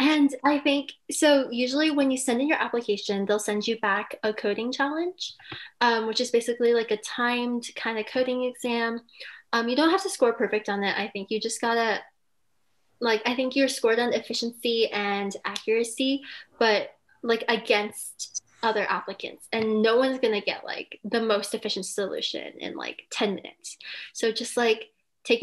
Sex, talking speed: female, 180 wpm